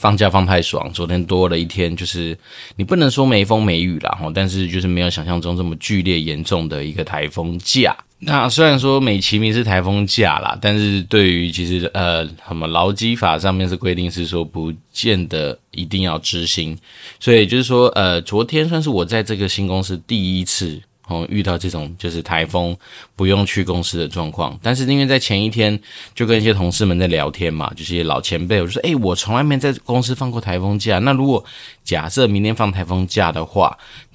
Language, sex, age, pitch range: Chinese, male, 20-39, 85-110 Hz